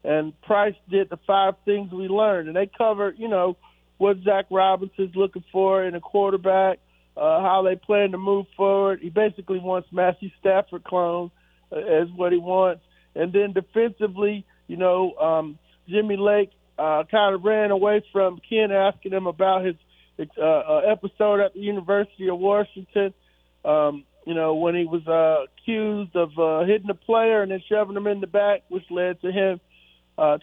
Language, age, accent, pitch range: English, 50-69, American, 170-200 Hz